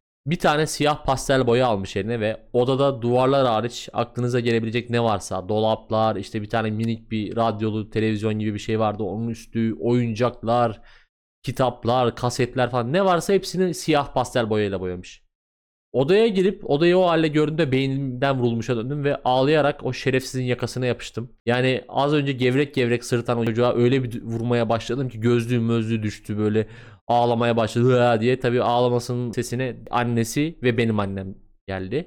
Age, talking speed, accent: 30-49, 155 wpm, native